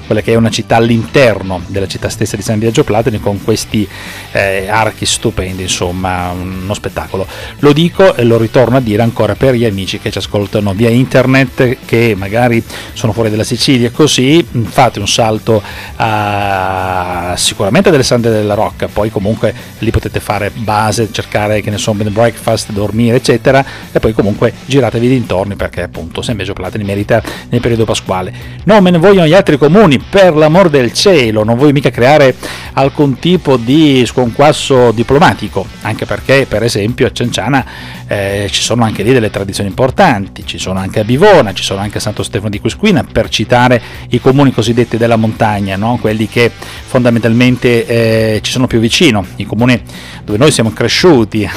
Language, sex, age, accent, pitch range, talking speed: Italian, male, 40-59, native, 100-125 Hz, 175 wpm